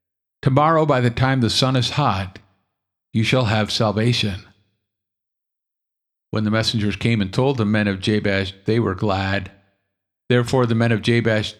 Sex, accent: male, American